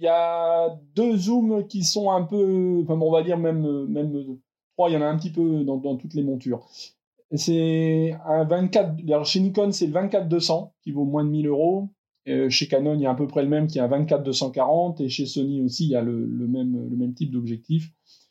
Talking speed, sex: 235 wpm, male